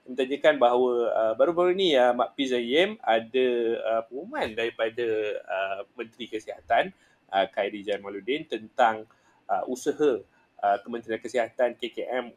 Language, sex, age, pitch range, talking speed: Malay, male, 30-49, 110-130 Hz, 135 wpm